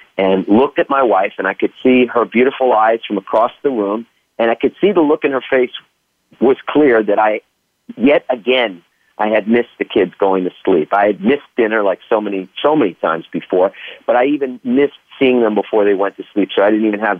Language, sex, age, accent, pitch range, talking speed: English, male, 40-59, American, 105-160 Hz, 230 wpm